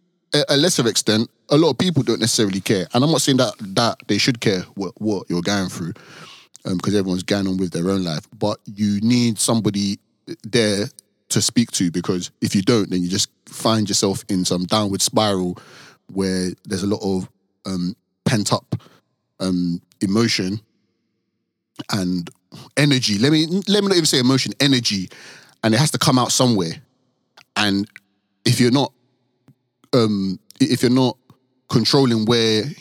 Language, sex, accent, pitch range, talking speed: English, male, British, 100-125 Hz, 170 wpm